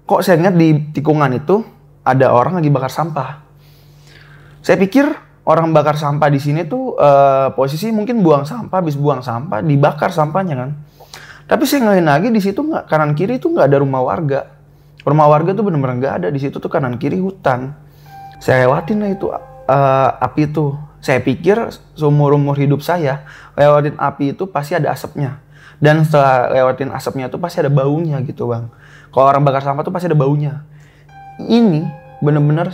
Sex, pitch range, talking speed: male, 140-165 Hz, 175 wpm